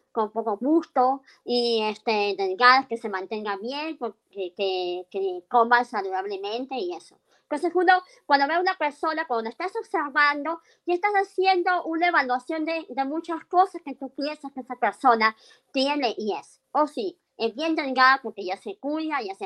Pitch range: 220-300 Hz